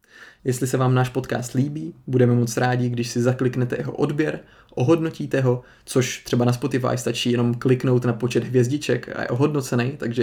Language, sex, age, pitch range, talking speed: Czech, male, 20-39, 120-135 Hz, 175 wpm